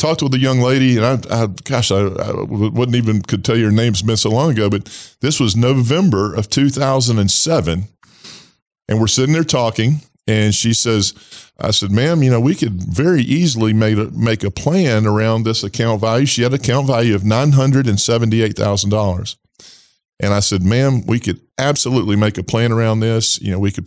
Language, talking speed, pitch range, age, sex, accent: English, 195 wpm, 105-130 Hz, 40-59, male, American